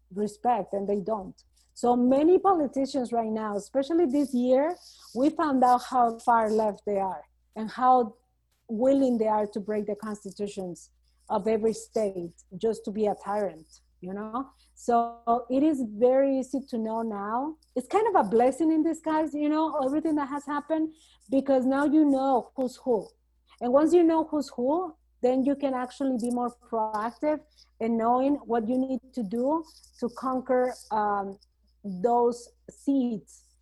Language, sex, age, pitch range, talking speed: English, female, 40-59, 215-275 Hz, 160 wpm